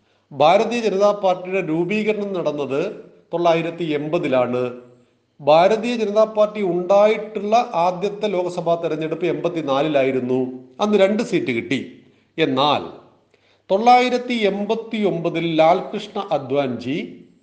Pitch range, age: 150-205 Hz, 40-59